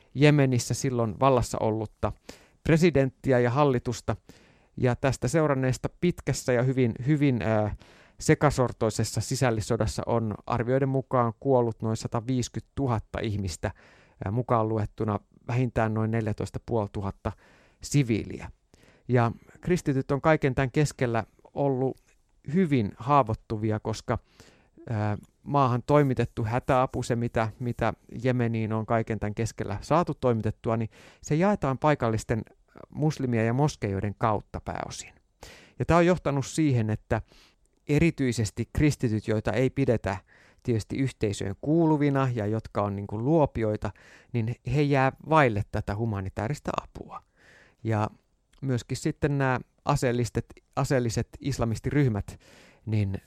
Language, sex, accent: Finnish, male, native